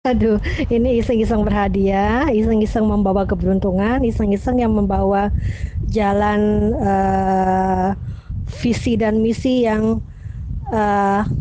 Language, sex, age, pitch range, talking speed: Indonesian, female, 20-39, 205-240 Hz, 95 wpm